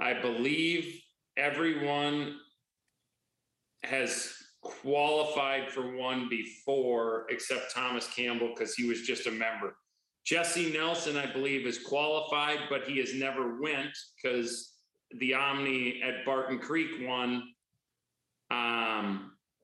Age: 30-49